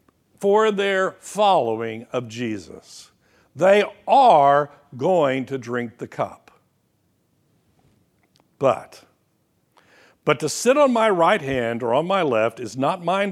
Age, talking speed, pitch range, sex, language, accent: 60-79, 120 wpm, 150-235 Hz, male, English, American